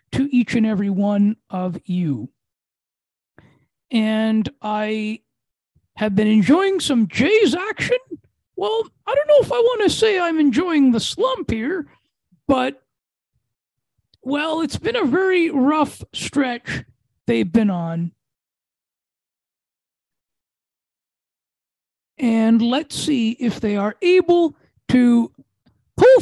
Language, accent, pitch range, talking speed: English, American, 195-290 Hz, 110 wpm